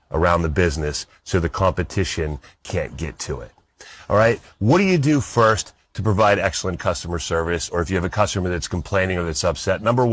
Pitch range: 85-110 Hz